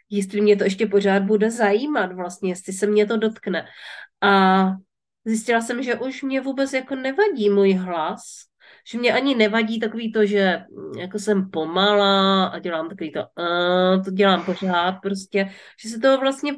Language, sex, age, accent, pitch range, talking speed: Czech, female, 30-49, native, 185-215 Hz, 170 wpm